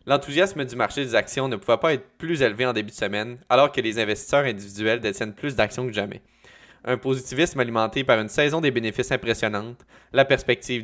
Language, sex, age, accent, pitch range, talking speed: French, male, 20-39, Canadian, 110-135 Hz, 200 wpm